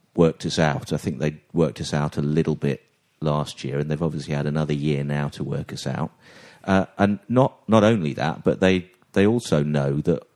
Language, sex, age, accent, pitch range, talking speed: English, male, 40-59, British, 75-100 Hz, 215 wpm